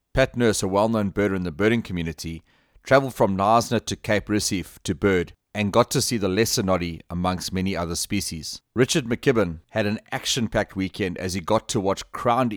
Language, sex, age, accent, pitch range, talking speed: English, male, 30-49, South African, 90-110 Hz, 190 wpm